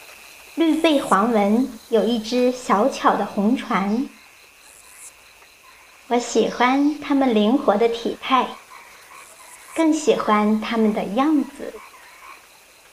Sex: male